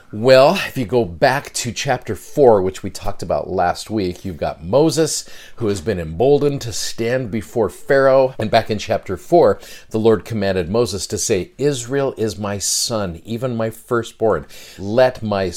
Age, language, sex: 50-69, English, male